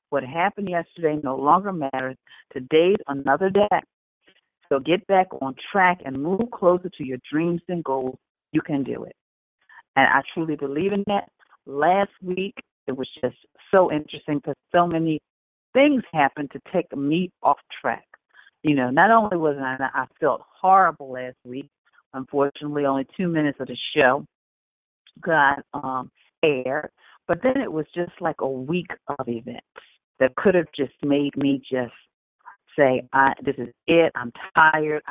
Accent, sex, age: American, female, 40-59